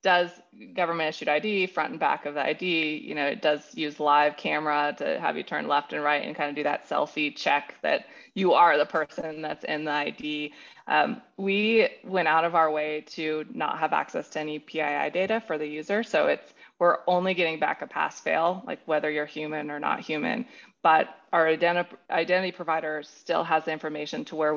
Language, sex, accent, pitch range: English, female, American, 150-175 Hz